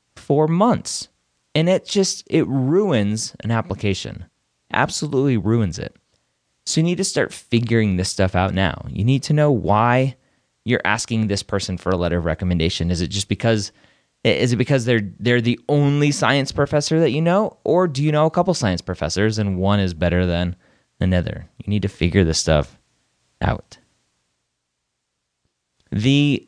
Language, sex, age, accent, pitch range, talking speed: English, male, 30-49, American, 85-115 Hz, 170 wpm